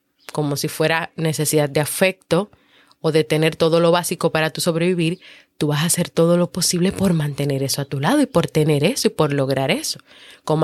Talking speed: 210 wpm